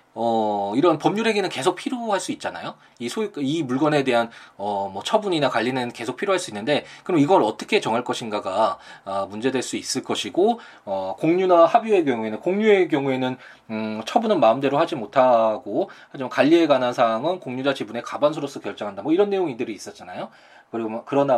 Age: 20-39